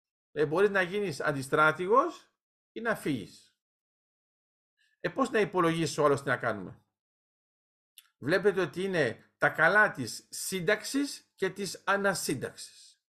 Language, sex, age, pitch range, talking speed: Greek, male, 50-69, 140-205 Hz, 120 wpm